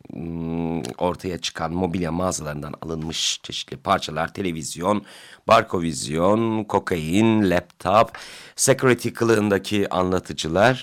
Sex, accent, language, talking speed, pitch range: male, native, Turkish, 80 wpm, 85-115 Hz